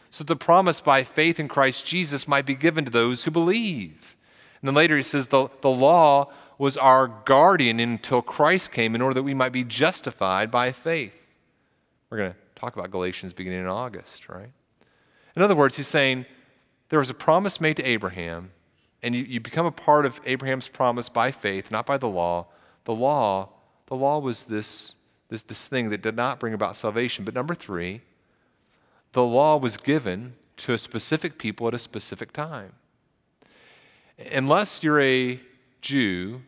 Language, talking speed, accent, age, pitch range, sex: English, 180 wpm, American, 40-59, 110-140 Hz, male